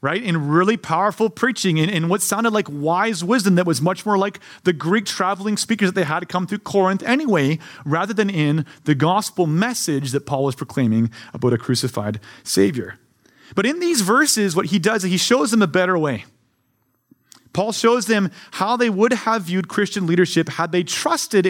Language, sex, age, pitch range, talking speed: English, male, 30-49, 135-205 Hz, 200 wpm